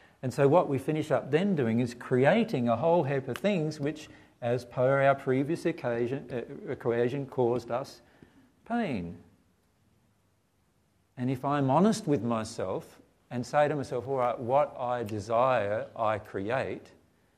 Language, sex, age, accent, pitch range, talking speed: English, male, 50-69, Australian, 110-155 Hz, 150 wpm